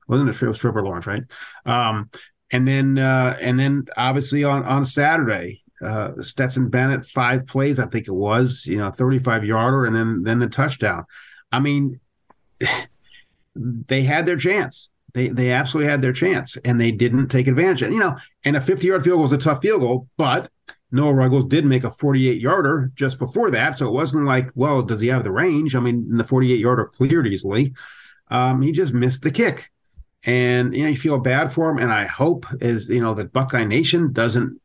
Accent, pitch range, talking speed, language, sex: American, 120-140 Hz, 205 wpm, English, male